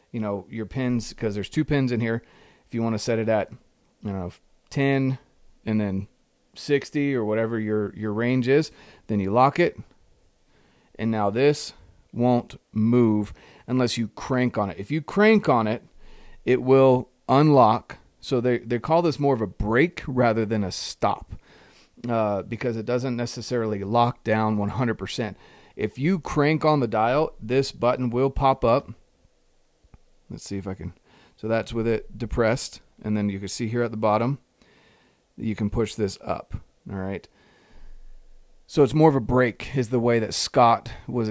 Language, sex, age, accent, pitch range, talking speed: English, male, 30-49, American, 110-130 Hz, 175 wpm